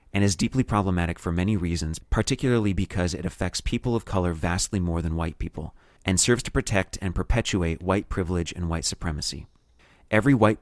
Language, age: English, 30-49